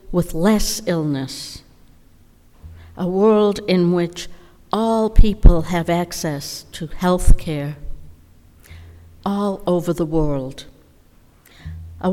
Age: 60-79